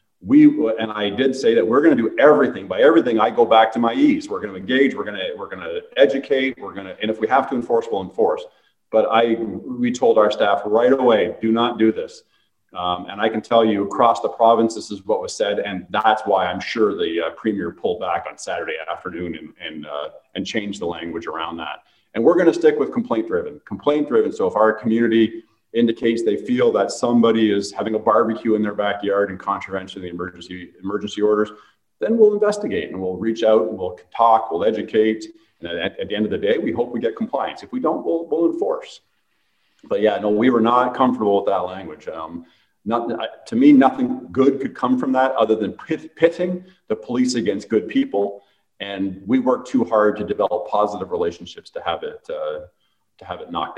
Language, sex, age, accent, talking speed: English, male, 40-59, American, 225 wpm